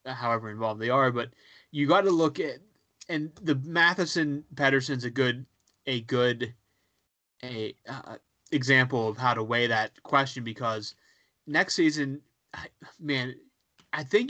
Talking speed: 140 wpm